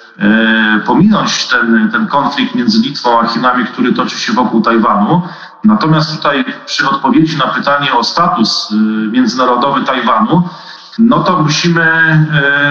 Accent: native